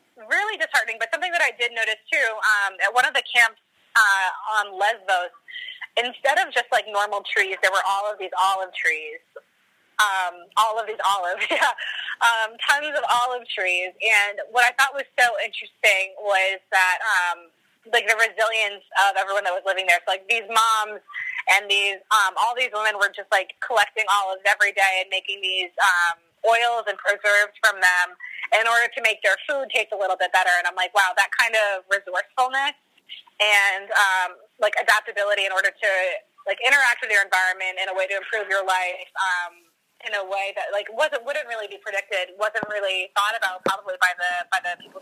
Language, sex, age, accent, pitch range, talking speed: English, female, 20-39, American, 190-235 Hz, 195 wpm